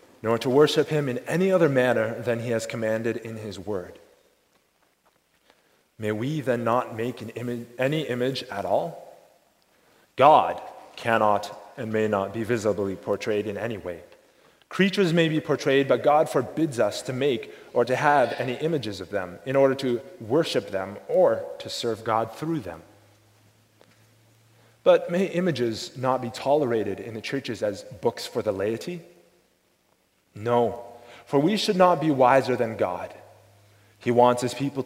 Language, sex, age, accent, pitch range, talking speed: English, male, 30-49, American, 115-155 Hz, 155 wpm